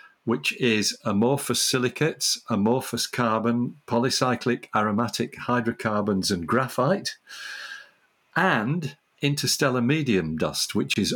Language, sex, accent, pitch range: English, male, British, 110-150 Hz